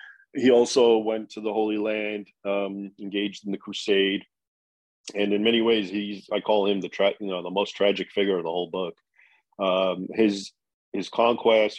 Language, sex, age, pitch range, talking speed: English, male, 40-59, 90-100 Hz, 185 wpm